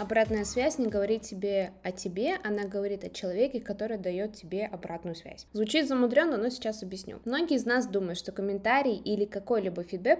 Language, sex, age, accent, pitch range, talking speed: Russian, female, 20-39, native, 195-245 Hz, 175 wpm